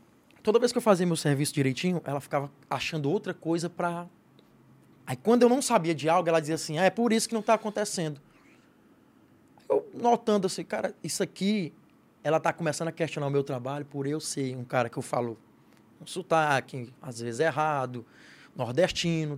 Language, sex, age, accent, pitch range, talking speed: Portuguese, male, 20-39, Brazilian, 140-205 Hz, 185 wpm